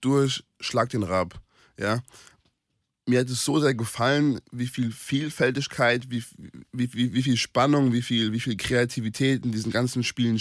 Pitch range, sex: 110-130 Hz, male